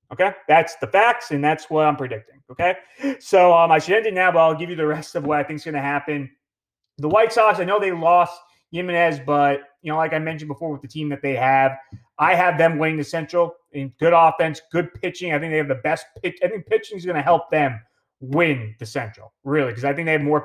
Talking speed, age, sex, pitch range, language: 255 wpm, 30-49, male, 130-165 Hz, English